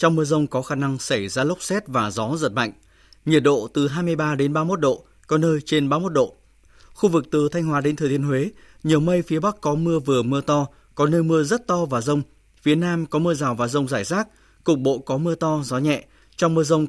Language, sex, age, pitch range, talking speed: Vietnamese, male, 20-39, 130-160 Hz, 250 wpm